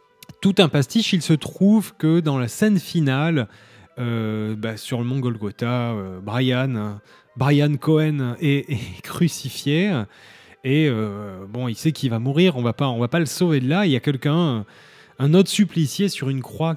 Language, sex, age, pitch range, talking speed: French, male, 20-39, 120-155 Hz, 180 wpm